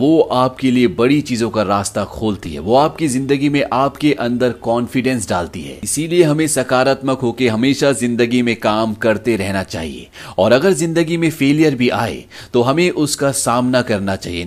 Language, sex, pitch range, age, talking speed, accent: Hindi, male, 110-140 Hz, 30-49, 175 wpm, native